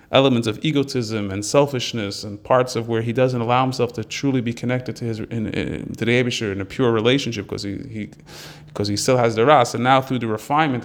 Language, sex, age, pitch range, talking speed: English, male, 30-49, 115-135 Hz, 230 wpm